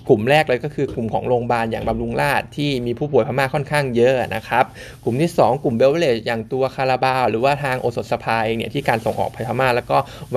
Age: 20-39